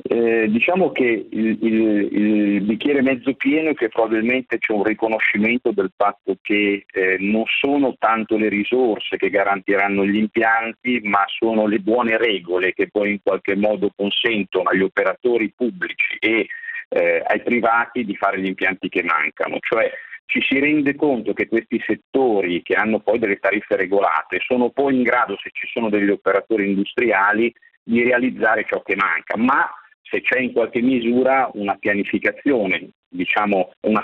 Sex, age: male, 50-69